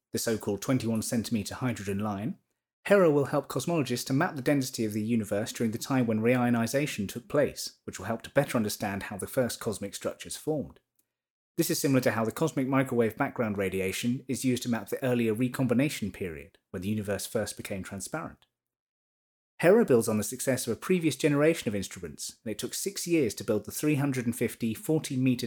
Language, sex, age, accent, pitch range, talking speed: English, male, 30-49, British, 110-140 Hz, 185 wpm